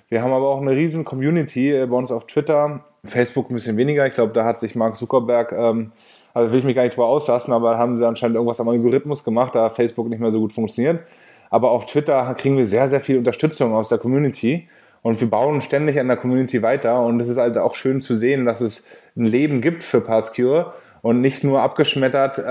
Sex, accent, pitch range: male, German, 120-150 Hz